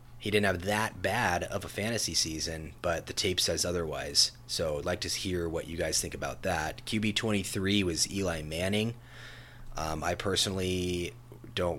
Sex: male